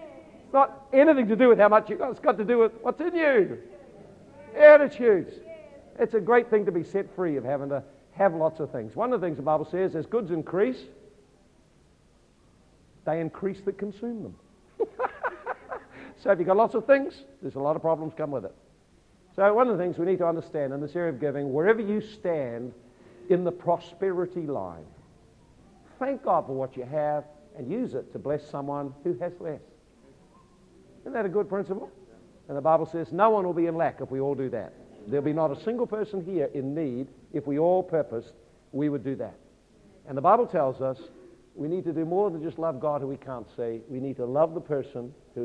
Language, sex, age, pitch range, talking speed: English, male, 50-69, 140-200 Hz, 215 wpm